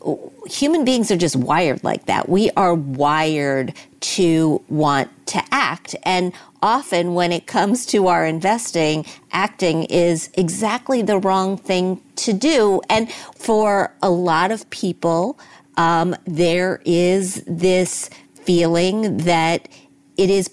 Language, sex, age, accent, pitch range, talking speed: English, female, 50-69, American, 170-215 Hz, 130 wpm